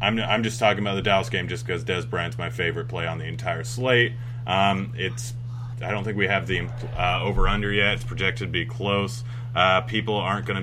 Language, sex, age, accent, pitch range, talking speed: English, male, 30-49, American, 100-120 Hz, 220 wpm